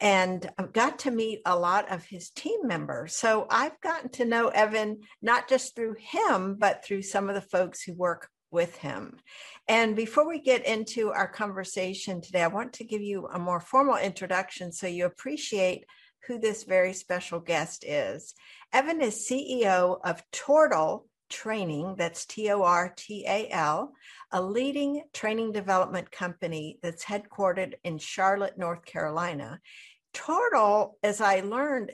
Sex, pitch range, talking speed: female, 175-225 Hz, 150 wpm